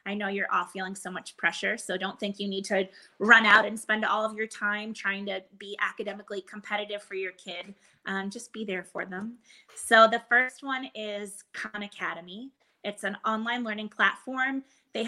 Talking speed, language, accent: 195 wpm, English, American